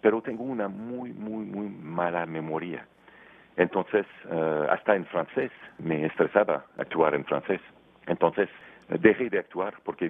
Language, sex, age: Spanish, male, 40-59